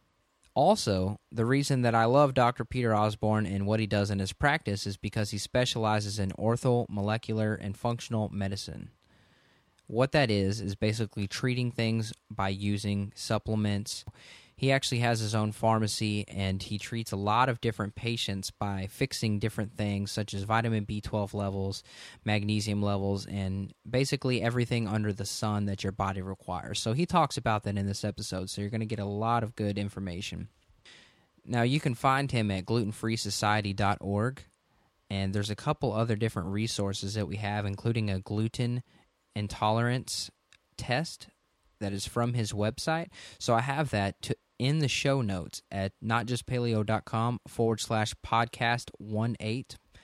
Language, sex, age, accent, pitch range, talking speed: English, male, 20-39, American, 100-115 Hz, 155 wpm